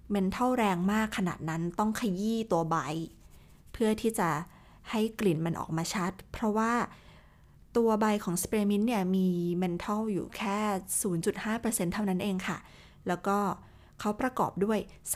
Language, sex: Thai, female